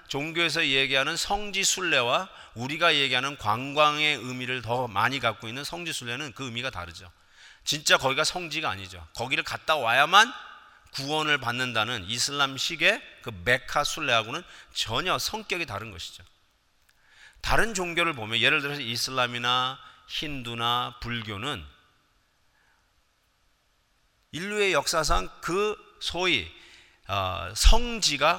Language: Korean